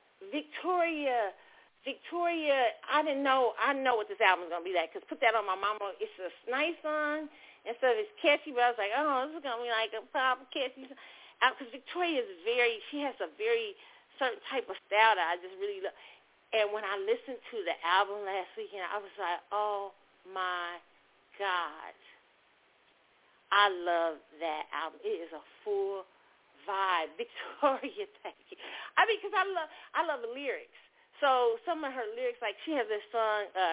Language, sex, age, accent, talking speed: English, female, 40-59, American, 195 wpm